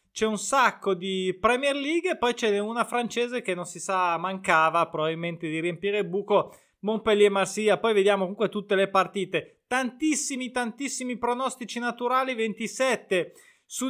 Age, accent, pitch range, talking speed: 30-49, native, 185-240 Hz, 145 wpm